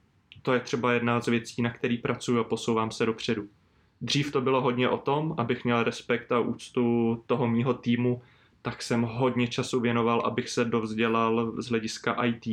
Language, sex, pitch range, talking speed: Czech, male, 115-125 Hz, 180 wpm